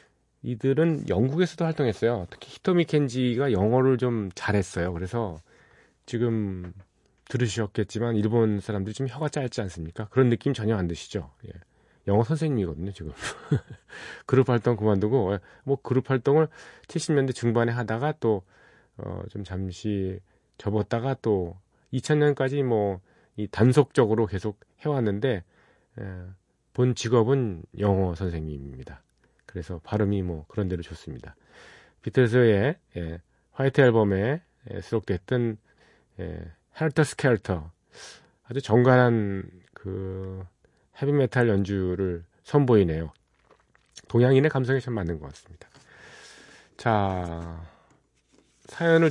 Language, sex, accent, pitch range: Korean, male, native, 95-135 Hz